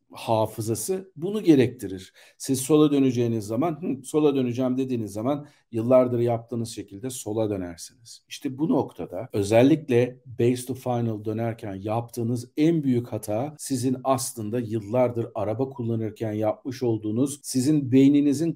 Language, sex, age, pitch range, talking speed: Turkish, male, 50-69, 110-130 Hz, 125 wpm